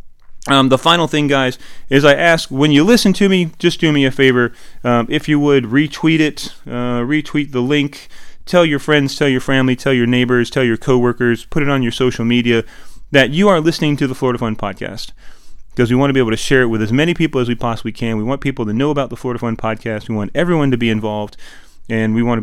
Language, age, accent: English, 30-49, American